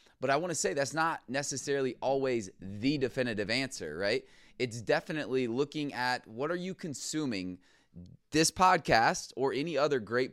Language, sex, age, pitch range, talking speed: English, male, 20-39, 105-140 Hz, 155 wpm